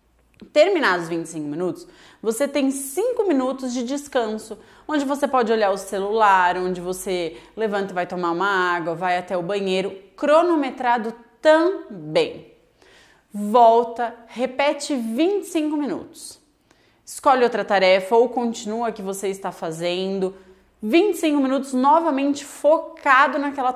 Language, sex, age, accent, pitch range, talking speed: Portuguese, female, 20-39, Brazilian, 200-290 Hz, 120 wpm